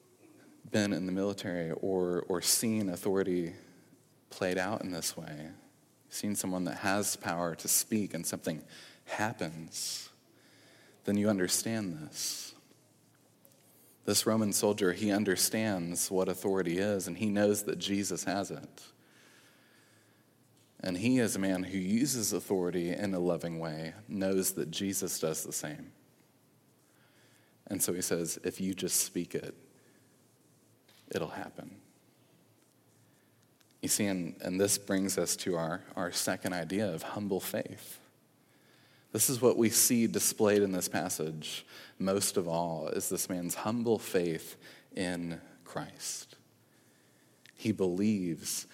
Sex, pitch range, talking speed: male, 90-105 Hz, 130 wpm